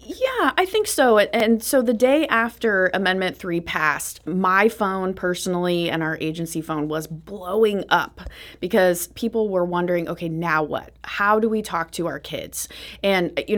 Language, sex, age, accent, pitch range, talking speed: English, female, 30-49, American, 165-210 Hz, 170 wpm